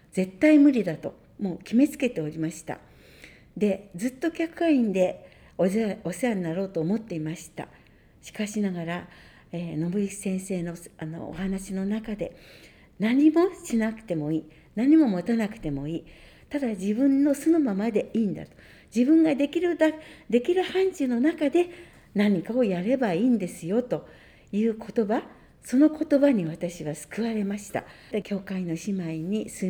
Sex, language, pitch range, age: female, Japanese, 185-265 Hz, 60-79